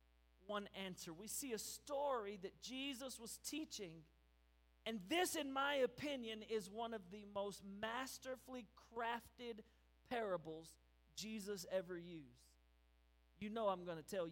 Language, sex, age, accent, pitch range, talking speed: English, male, 40-59, American, 200-265 Hz, 130 wpm